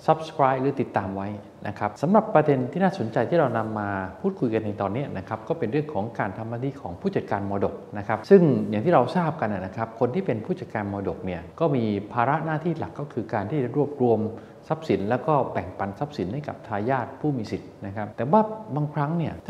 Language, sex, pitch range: Thai, male, 105-145 Hz